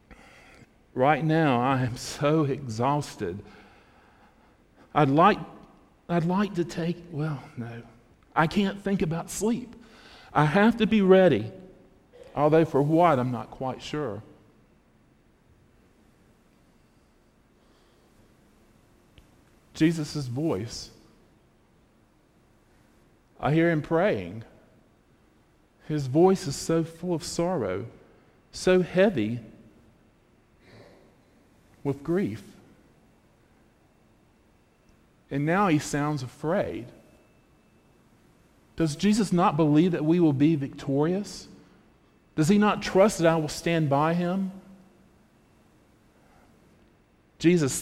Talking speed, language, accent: 90 wpm, English, American